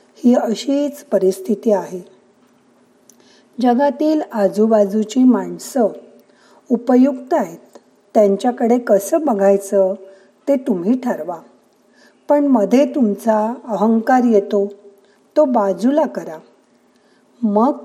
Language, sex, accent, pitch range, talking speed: Marathi, female, native, 200-270 Hz, 85 wpm